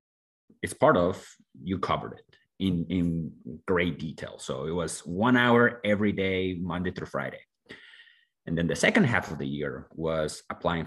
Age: 30-49